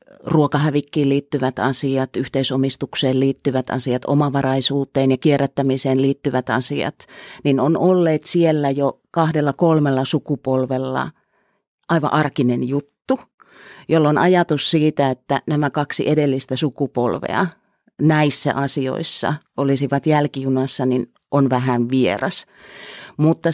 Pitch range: 130-155 Hz